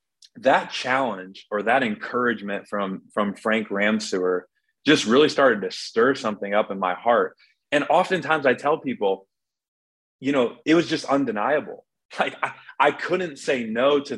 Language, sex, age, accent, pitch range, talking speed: English, male, 20-39, American, 100-120 Hz, 155 wpm